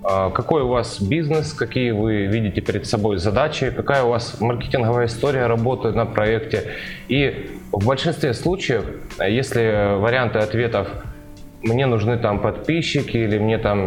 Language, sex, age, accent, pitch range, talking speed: Russian, male, 20-39, native, 105-130 Hz, 140 wpm